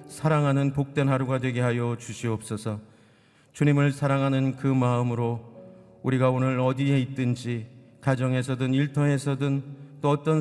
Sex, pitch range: male, 105-135 Hz